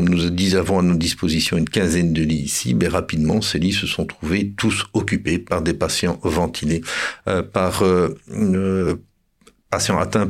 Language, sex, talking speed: French, male, 140 wpm